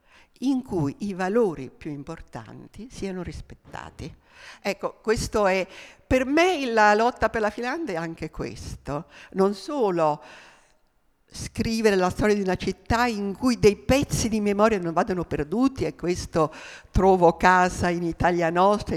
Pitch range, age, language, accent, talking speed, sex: 165-215 Hz, 50-69, Italian, native, 140 wpm, female